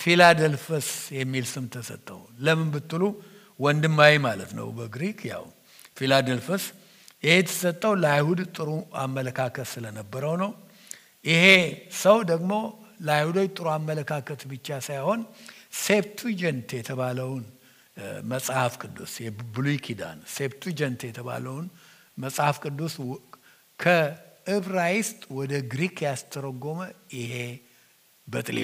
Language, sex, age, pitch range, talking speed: English, male, 60-79, 135-190 Hz, 65 wpm